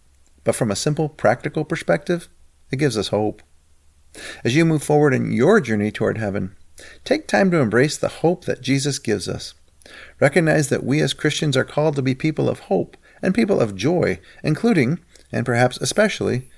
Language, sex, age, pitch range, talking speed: English, male, 40-59, 110-150 Hz, 175 wpm